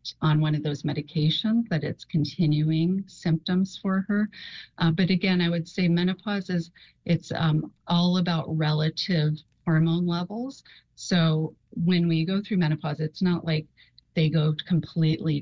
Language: English